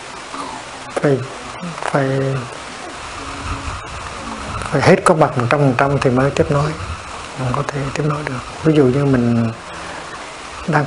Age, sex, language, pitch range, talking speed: 60-79, male, Vietnamese, 125-150 Hz, 140 wpm